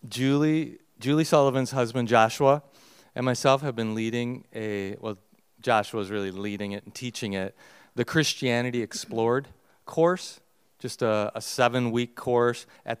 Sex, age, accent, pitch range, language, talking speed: male, 40-59, American, 110-130 Hz, English, 140 wpm